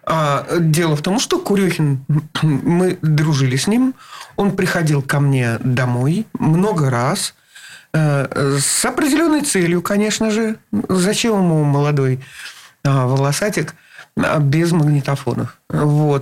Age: 40-59